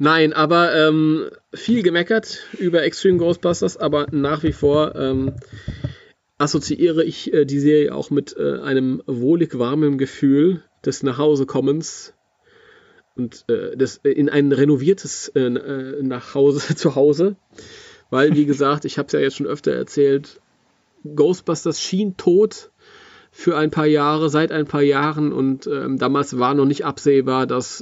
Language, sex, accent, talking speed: German, male, German, 140 wpm